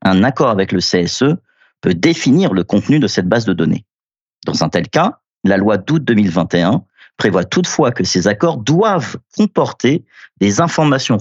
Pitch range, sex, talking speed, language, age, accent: 95-140 Hz, male, 165 wpm, French, 40-59, French